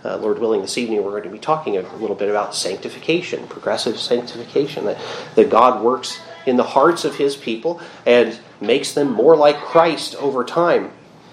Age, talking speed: 30-49, 185 wpm